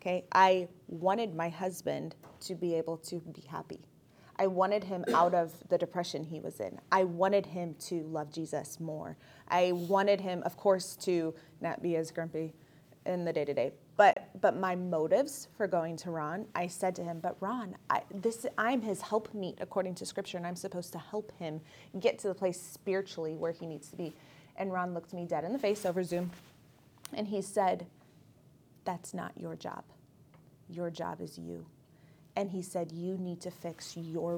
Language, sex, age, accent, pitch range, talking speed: English, female, 20-39, American, 160-185 Hz, 190 wpm